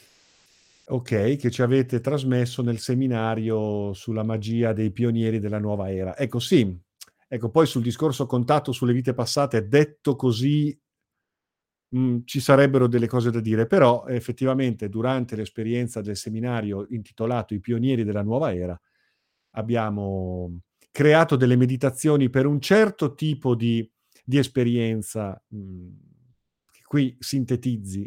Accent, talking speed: native, 125 wpm